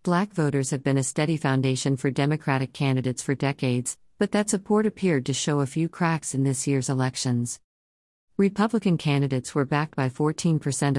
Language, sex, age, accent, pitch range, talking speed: English, female, 50-69, American, 130-165 Hz, 170 wpm